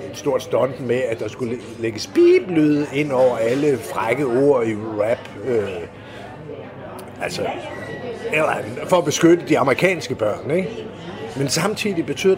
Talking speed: 140 wpm